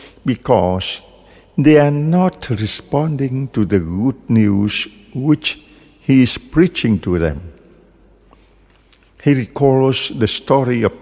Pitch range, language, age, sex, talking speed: 100-135 Hz, English, 50-69, male, 110 wpm